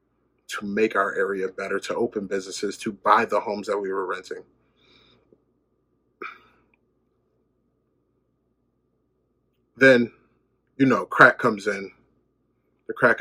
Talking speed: 110 wpm